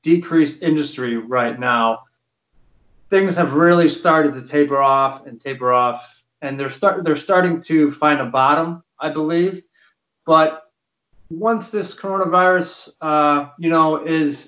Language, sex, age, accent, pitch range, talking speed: English, male, 30-49, American, 140-170 Hz, 135 wpm